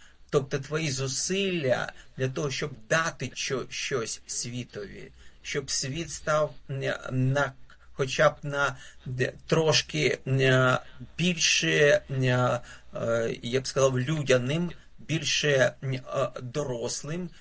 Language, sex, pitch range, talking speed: English, male, 130-150 Hz, 85 wpm